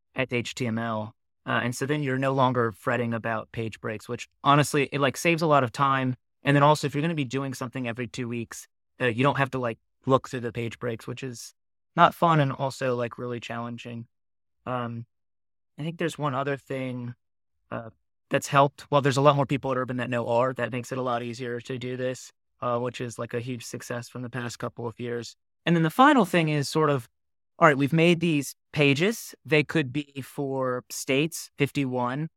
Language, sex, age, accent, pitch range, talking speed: English, male, 20-39, American, 120-140 Hz, 220 wpm